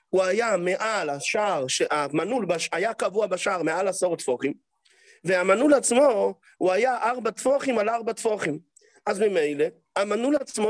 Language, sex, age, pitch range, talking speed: English, male, 40-59, 185-255 Hz, 135 wpm